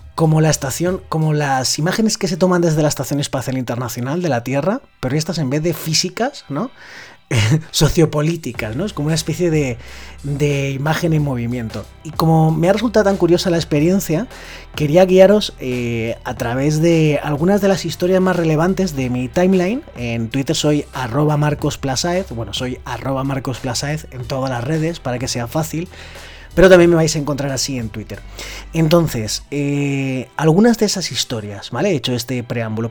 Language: Spanish